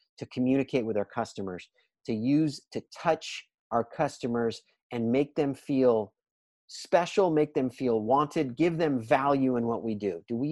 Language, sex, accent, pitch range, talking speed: English, male, American, 115-145 Hz, 165 wpm